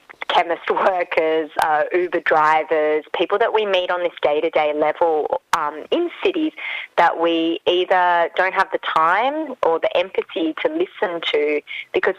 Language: English